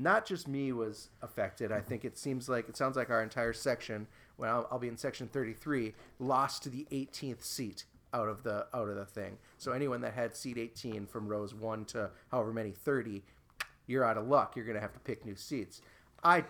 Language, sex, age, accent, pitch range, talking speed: English, male, 30-49, American, 110-145 Hz, 220 wpm